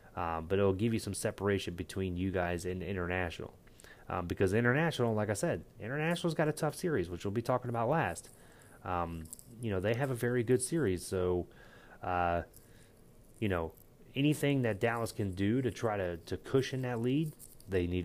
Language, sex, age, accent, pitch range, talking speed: English, male, 30-49, American, 95-120 Hz, 185 wpm